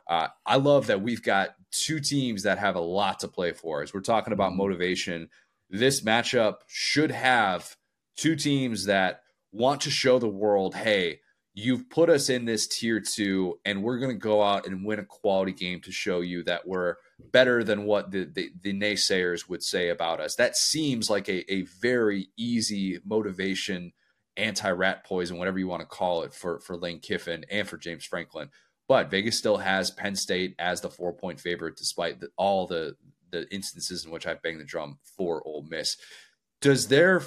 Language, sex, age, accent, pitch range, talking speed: English, male, 30-49, American, 95-115 Hz, 190 wpm